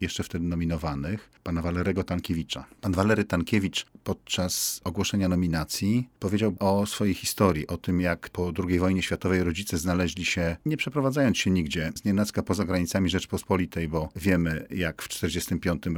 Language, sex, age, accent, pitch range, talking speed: Polish, male, 40-59, native, 85-100 Hz, 150 wpm